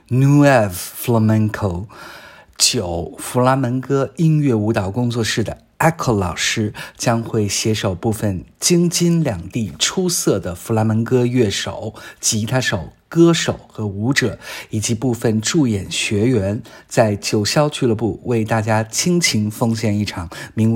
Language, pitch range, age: Chinese, 105-130 Hz, 50-69